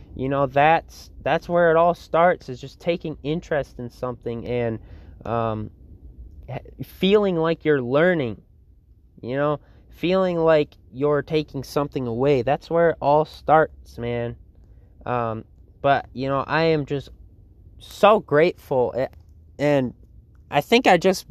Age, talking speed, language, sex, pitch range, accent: 20-39, 135 wpm, English, male, 115-155 Hz, American